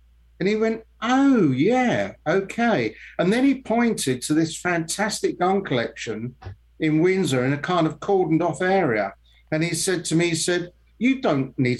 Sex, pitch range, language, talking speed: male, 130-175 Hz, English, 170 wpm